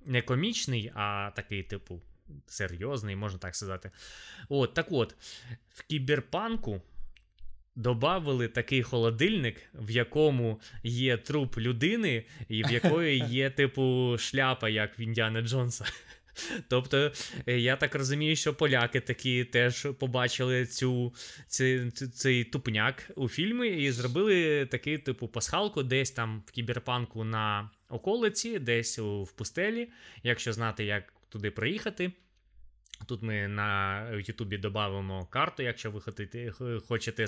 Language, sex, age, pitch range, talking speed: Ukrainian, male, 20-39, 105-130 Hz, 125 wpm